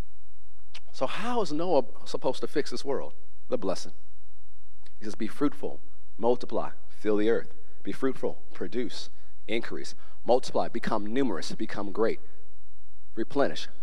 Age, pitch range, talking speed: 40-59, 75-110 Hz, 125 wpm